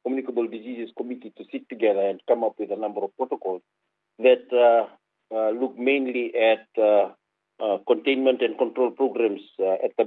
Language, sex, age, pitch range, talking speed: English, male, 50-69, 105-140 Hz, 175 wpm